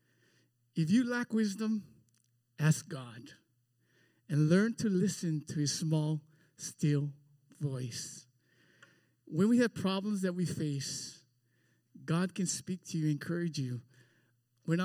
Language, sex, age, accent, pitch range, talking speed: English, male, 50-69, American, 140-175 Hz, 125 wpm